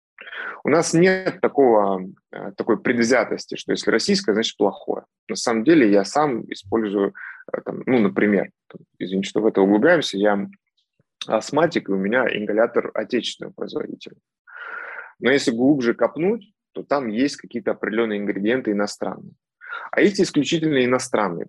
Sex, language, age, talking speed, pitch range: male, Russian, 20-39, 135 wpm, 105-165 Hz